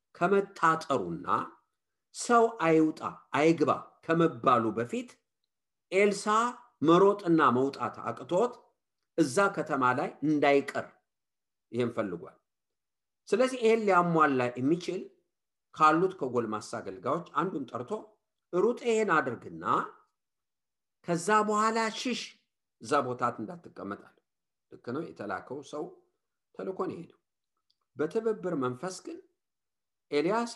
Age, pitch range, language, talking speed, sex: 50-69, 145-220 Hz, English, 75 wpm, male